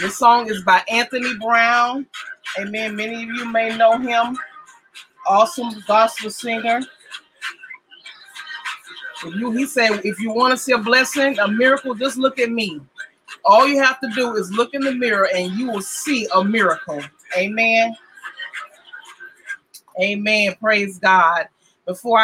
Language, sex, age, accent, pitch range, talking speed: English, female, 30-49, American, 210-235 Hz, 145 wpm